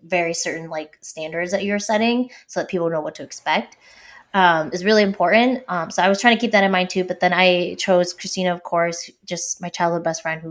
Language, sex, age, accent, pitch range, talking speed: English, female, 20-39, American, 165-210 Hz, 240 wpm